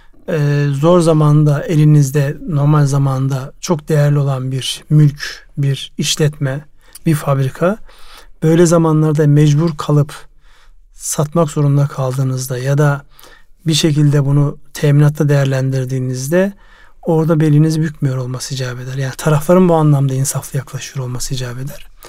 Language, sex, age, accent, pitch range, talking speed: Turkish, male, 40-59, native, 140-170 Hz, 115 wpm